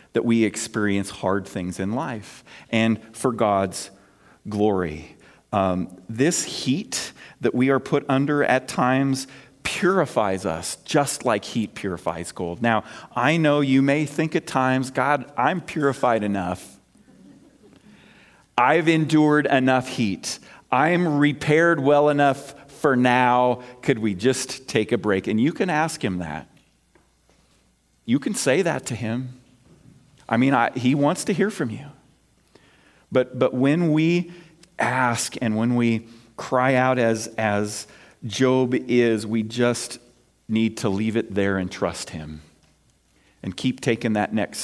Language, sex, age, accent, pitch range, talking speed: English, male, 40-59, American, 100-135 Hz, 145 wpm